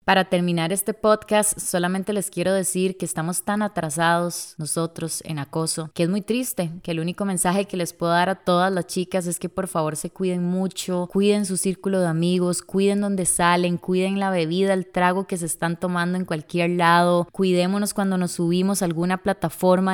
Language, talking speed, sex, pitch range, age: Spanish, 195 wpm, female, 170-195 Hz, 20-39